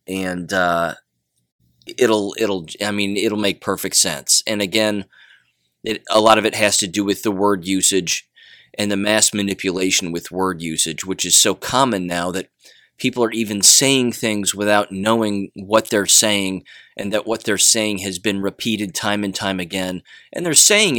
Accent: American